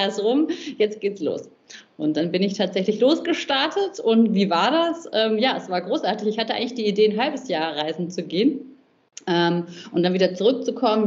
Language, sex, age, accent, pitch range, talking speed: German, female, 30-49, German, 170-215 Hz, 195 wpm